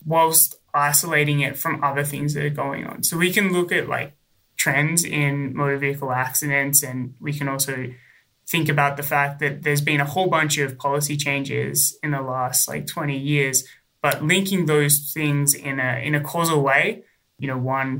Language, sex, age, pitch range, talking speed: English, male, 20-39, 135-150 Hz, 190 wpm